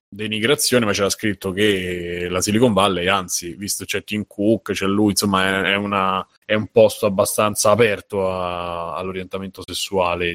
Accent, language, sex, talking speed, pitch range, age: native, Italian, male, 150 wpm, 95-115 Hz, 20-39